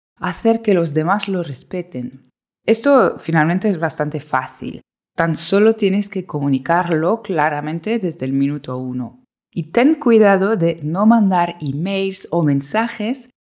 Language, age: Spanish, 20-39